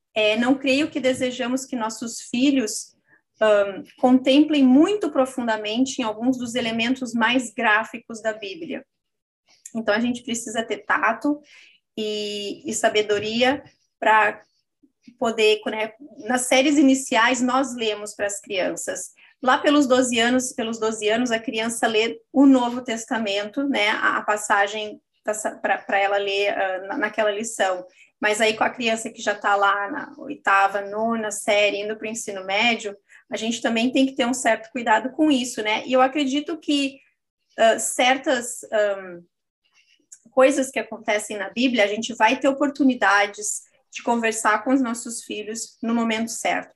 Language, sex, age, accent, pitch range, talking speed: Portuguese, female, 20-39, Brazilian, 215-260 Hz, 150 wpm